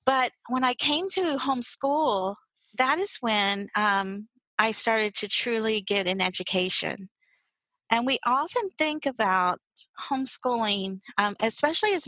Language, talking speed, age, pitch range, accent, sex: English, 130 wpm, 40-59, 200-265 Hz, American, female